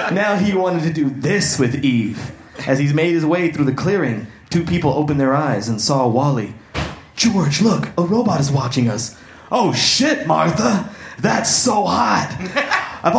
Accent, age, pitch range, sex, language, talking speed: American, 30-49, 135-200 Hz, male, English, 175 wpm